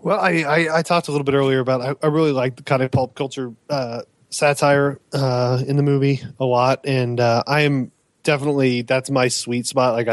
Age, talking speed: 20-39, 215 wpm